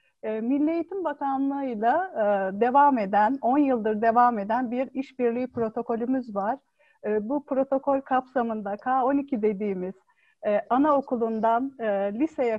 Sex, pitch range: female, 225-285 Hz